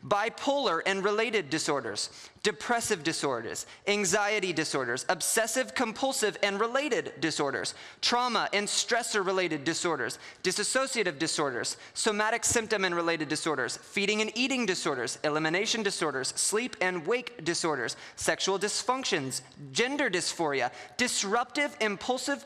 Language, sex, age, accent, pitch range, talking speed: English, male, 20-39, American, 185-255 Hz, 110 wpm